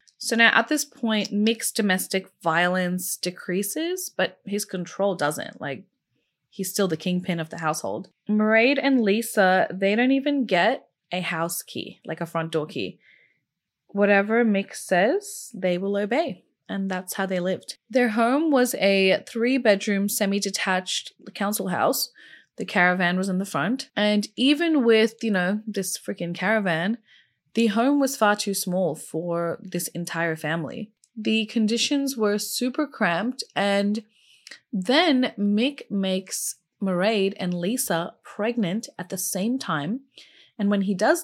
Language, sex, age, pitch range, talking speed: English, female, 20-39, 185-230 Hz, 145 wpm